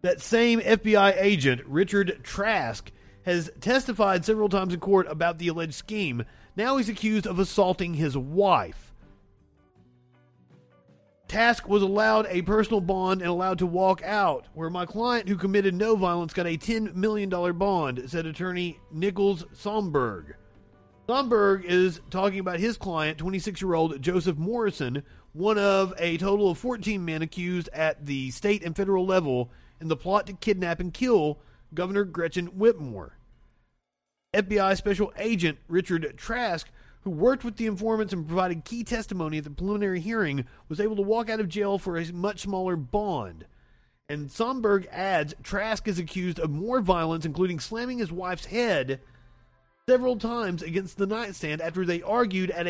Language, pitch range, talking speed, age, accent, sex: English, 160-210 Hz, 155 wpm, 30-49, American, male